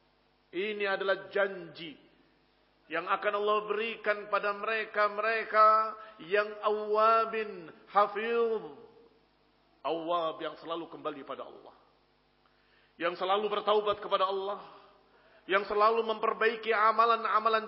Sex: male